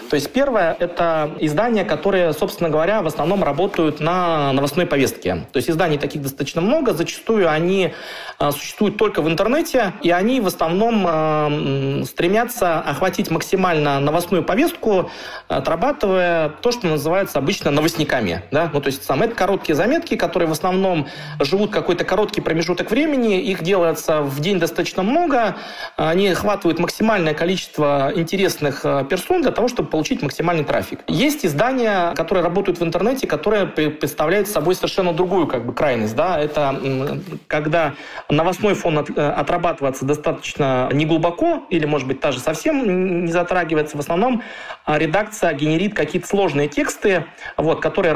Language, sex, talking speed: Russian, male, 140 wpm